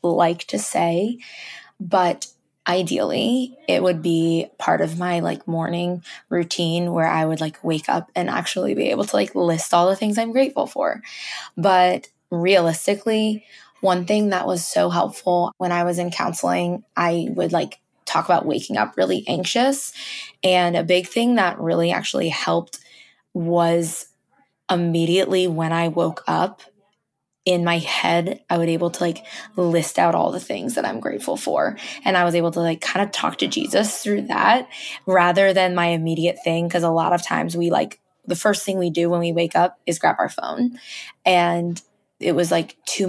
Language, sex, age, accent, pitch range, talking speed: English, female, 20-39, American, 170-195 Hz, 180 wpm